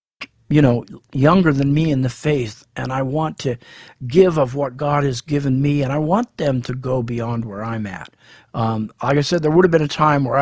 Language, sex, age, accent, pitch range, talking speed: English, male, 50-69, American, 125-150 Hz, 230 wpm